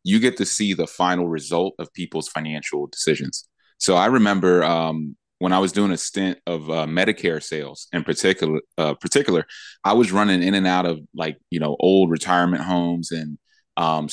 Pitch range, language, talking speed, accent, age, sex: 80-95 Hz, English, 185 wpm, American, 30-49, male